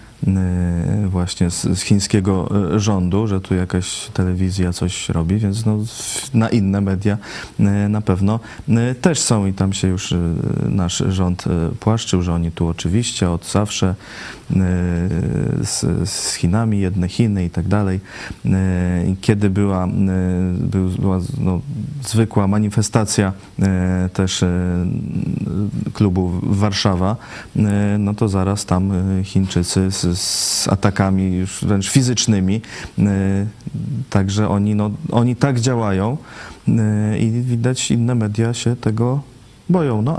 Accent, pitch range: native, 95-115 Hz